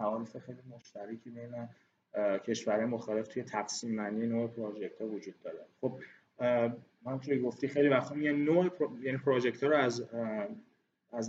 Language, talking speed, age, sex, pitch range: Persian, 155 wpm, 20-39, male, 110-135 Hz